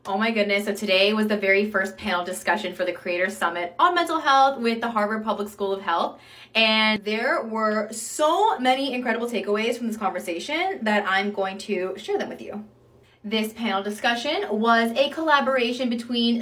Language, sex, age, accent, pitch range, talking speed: English, female, 20-39, American, 190-235 Hz, 185 wpm